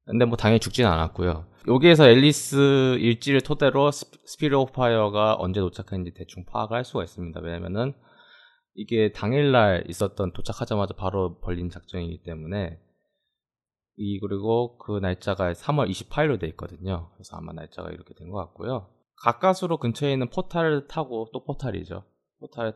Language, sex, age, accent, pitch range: Korean, male, 20-39, native, 90-125 Hz